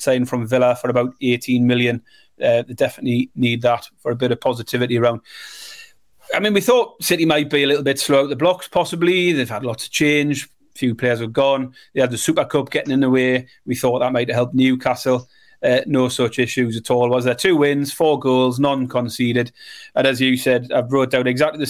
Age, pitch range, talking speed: 30-49, 125-155 Hz, 225 wpm